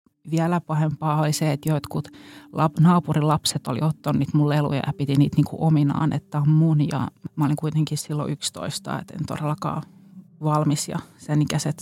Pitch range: 145-165 Hz